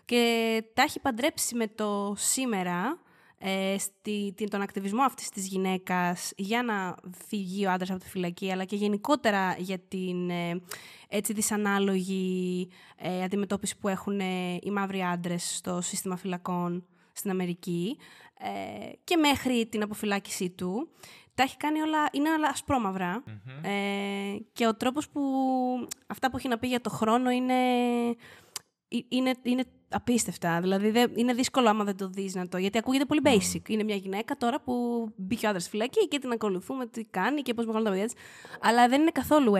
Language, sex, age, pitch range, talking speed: Greek, female, 20-39, 185-250 Hz, 150 wpm